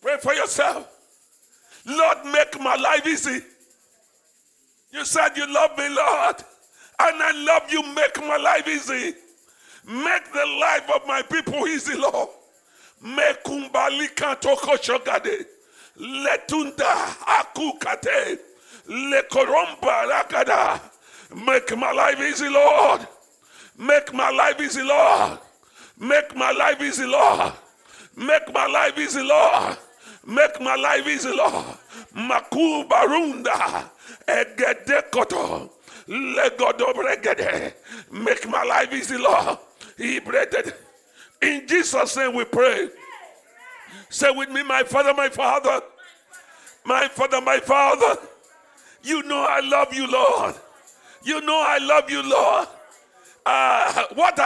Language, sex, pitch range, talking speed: English, female, 275-320 Hz, 110 wpm